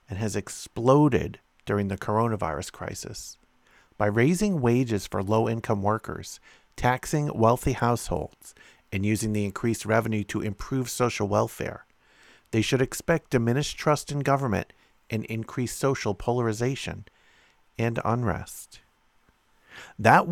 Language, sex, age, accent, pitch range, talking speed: English, male, 50-69, American, 105-135 Hz, 115 wpm